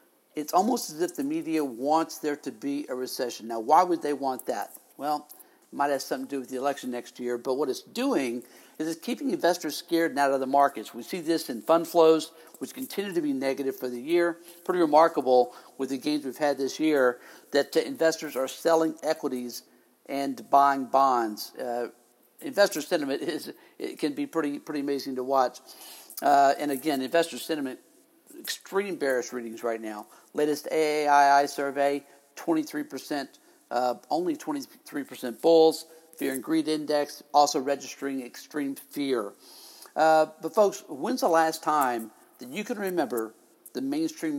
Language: English